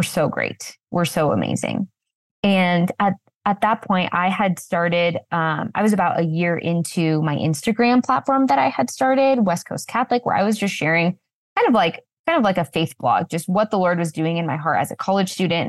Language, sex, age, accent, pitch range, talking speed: English, female, 20-39, American, 160-195 Hz, 220 wpm